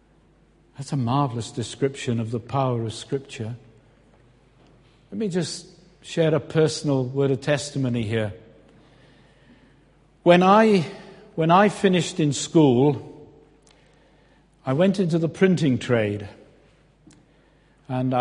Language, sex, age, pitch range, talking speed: English, male, 60-79, 130-170 Hz, 110 wpm